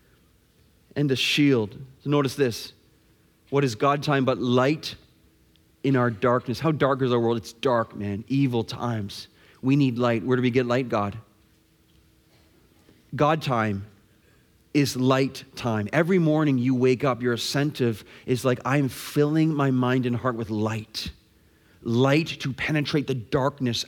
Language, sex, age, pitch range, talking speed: English, male, 40-59, 115-165 Hz, 150 wpm